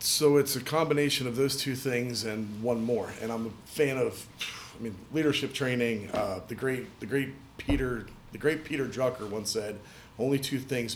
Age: 40-59